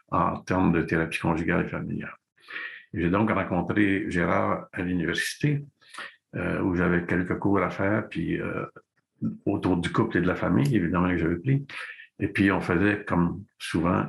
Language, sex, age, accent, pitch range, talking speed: French, male, 60-79, French, 85-105 Hz, 165 wpm